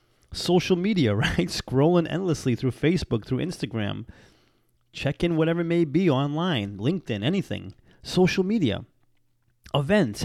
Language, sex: English, male